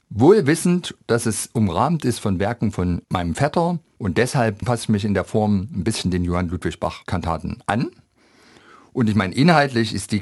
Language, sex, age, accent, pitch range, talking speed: German, male, 50-69, German, 95-120 Hz, 175 wpm